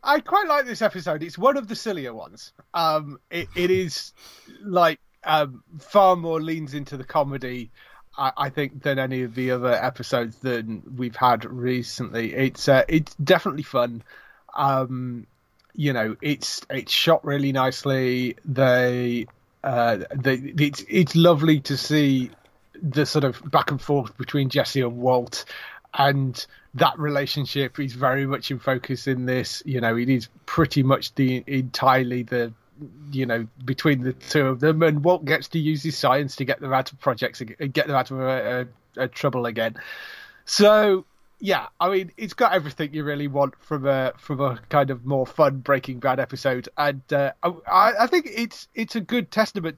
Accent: British